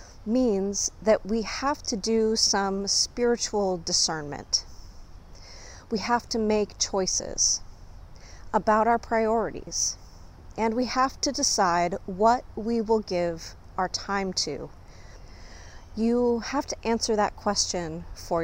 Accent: American